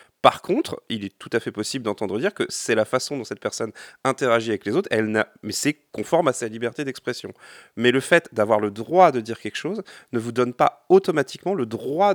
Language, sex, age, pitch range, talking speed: French, male, 30-49, 115-165 Hz, 230 wpm